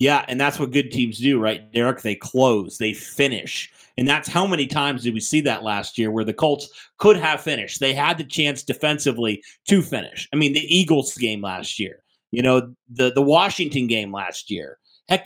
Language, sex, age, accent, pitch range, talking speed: English, male, 30-49, American, 125-150 Hz, 210 wpm